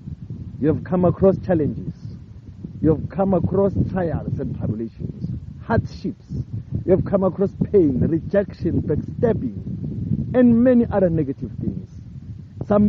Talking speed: 120 wpm